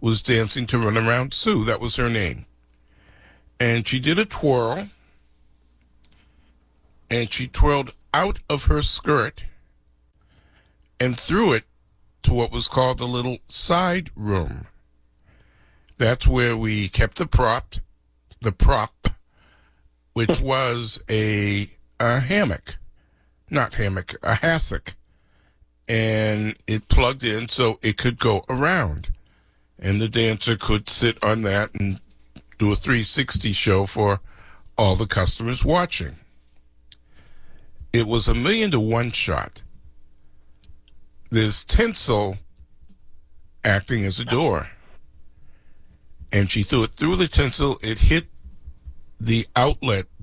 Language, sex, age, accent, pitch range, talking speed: English, male, 60-79, American, 75-115 Hz, 120 wpm